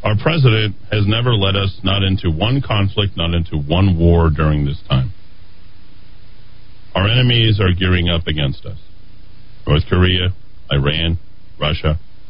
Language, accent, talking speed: English, American, 135 wpm